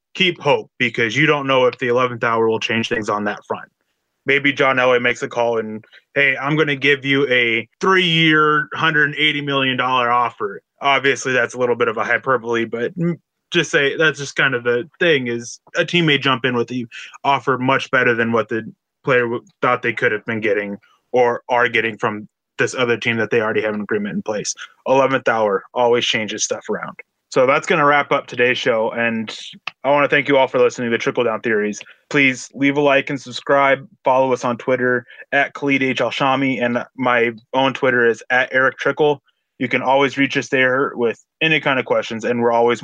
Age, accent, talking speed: 20-39, American, 215 wpm